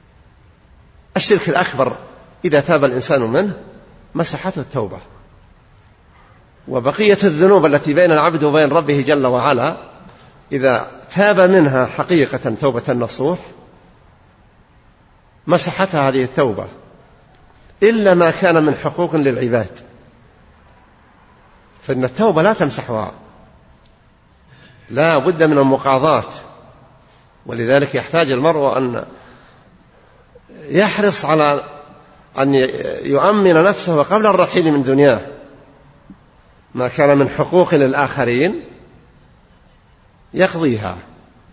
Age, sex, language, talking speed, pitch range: 50-69, male, Arabic, 85 wpm, 130-170 Hz